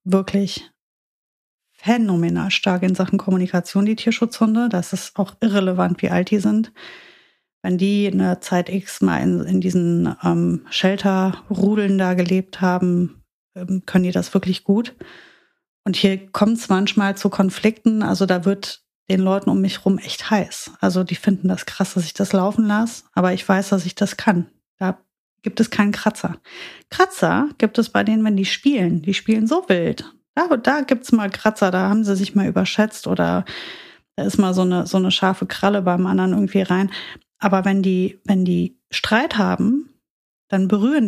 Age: 30-49